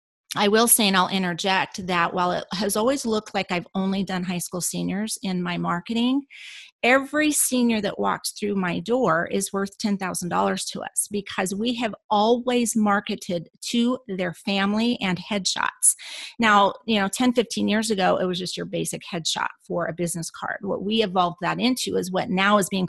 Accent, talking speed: American, 185 wpm